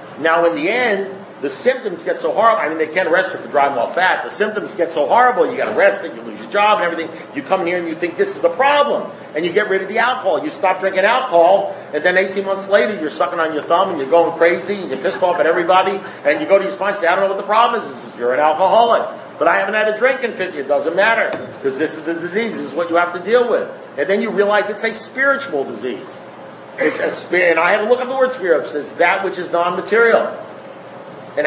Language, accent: English, American